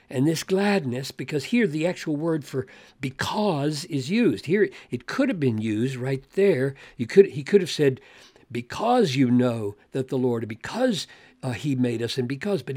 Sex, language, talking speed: male, English, 180 wpm